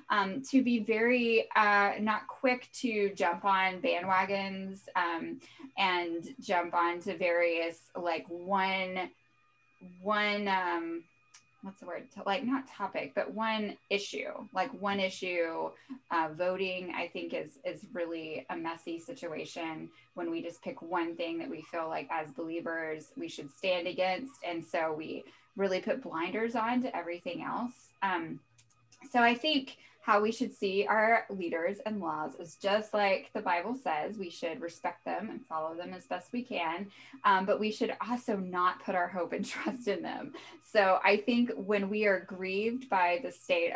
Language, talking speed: English, 165 wpm